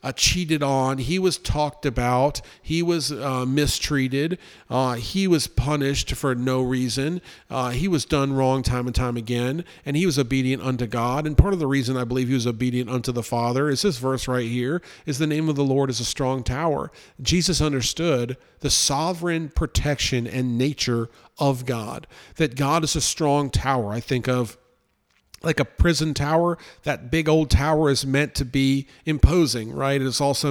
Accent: American